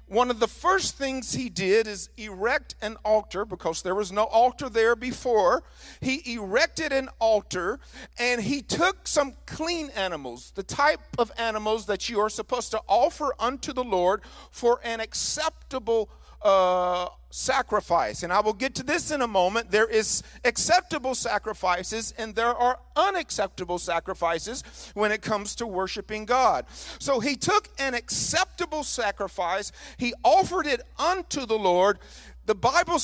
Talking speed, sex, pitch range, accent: 155 wpm, male, 210-280 Hz, American